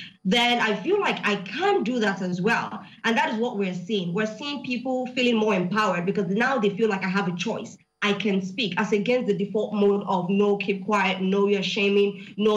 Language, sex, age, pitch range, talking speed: English, female, 20-39, 195-240 Hz, 225 wpm